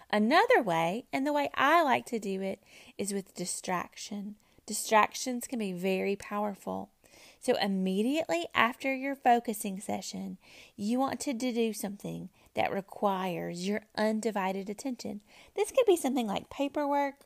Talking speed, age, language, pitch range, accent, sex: 140 wpm, 30-49, English, 205-280 Hz, American, female